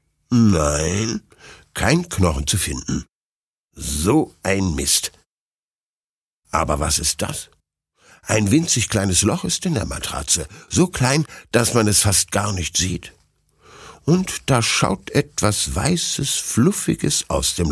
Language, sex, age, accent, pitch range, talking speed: German, male, 60-79, German, 90-130 Hz, 125 wpm